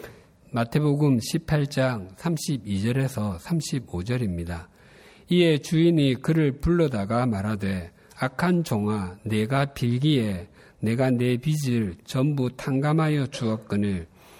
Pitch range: 105-150 Hz